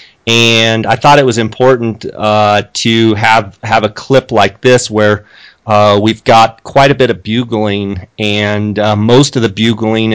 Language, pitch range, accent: English, 105-115 Hz, American